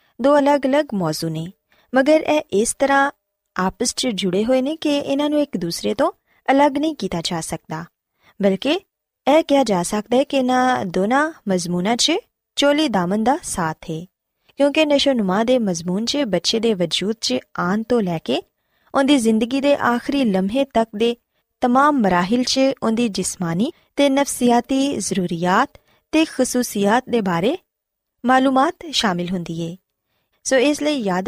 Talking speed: 155 wpm